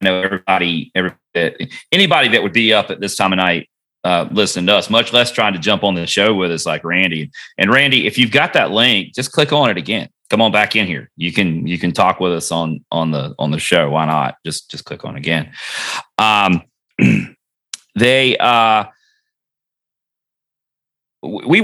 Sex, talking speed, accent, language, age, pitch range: male, 195 wpm, American, English, 30-49, 85-110 Hz